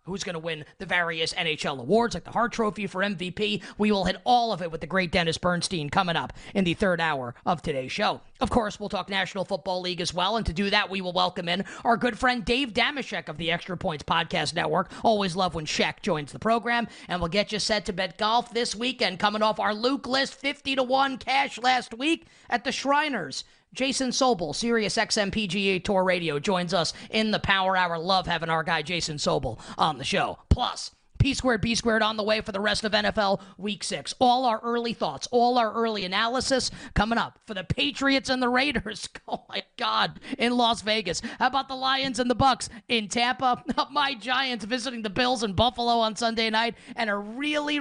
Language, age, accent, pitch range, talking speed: English, 30-49, American, 185-245 Hz, 210 wpm